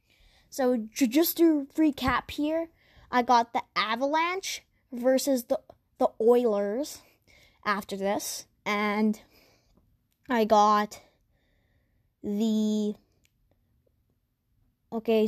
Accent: American